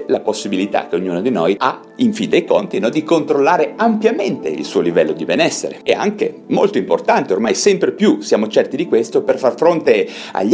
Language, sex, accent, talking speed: Italian, male, native, 200 wpm